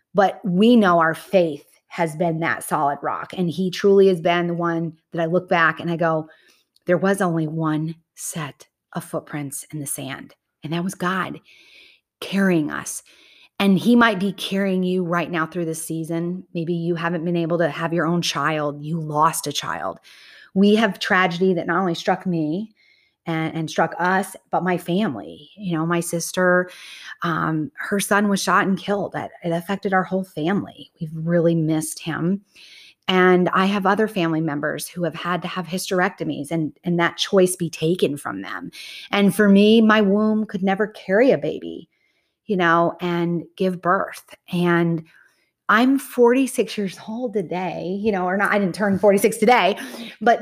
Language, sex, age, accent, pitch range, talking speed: English, female, 30-49, American, 165-205 Hz, 180 wpm